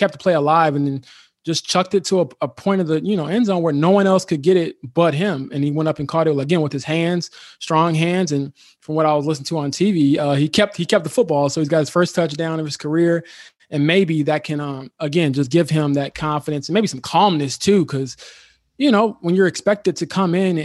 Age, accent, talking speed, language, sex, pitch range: 20-39, American, 265 wpm, English, male, 145-180 Hz